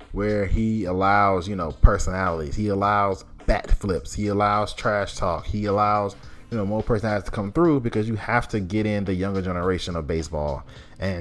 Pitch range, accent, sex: 90-110 Hz, American, male